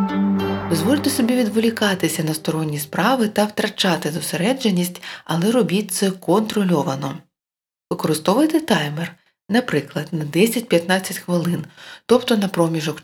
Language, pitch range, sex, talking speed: Ukrainian, 155-210 Hz, female, 100 wpm